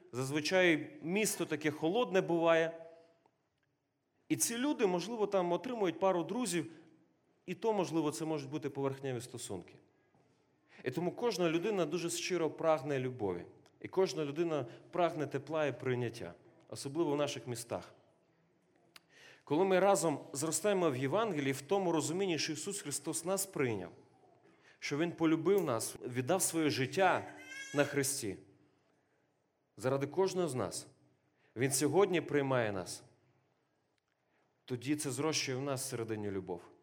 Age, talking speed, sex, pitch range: 30-49, 125 wpm, male, 140-180 Hz